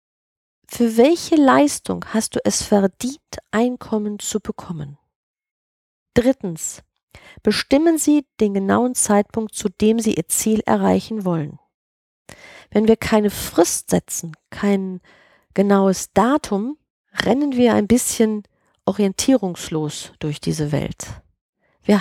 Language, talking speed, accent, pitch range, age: German, 110 wpm, German, 180-240 Hz, 40-59